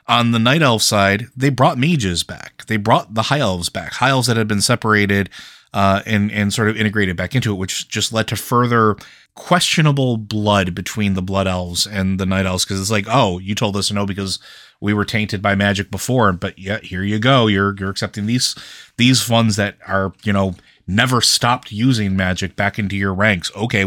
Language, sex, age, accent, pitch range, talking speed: English, male, 30-49, American, 100-120 Hz, 215 wpm